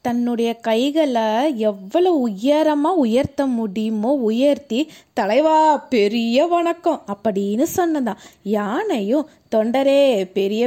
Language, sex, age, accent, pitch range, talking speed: Tamil, female, 20-39, native, 220-315 Hz, 85 wpm